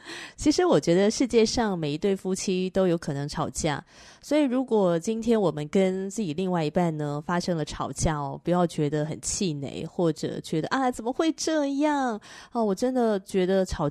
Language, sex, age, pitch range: Chinese, female, 20-39, 160-210 Hz